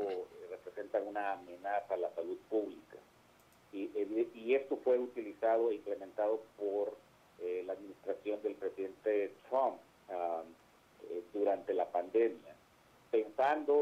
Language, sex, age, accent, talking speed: Spanish, male, 50-69, Mexican, 115 wpm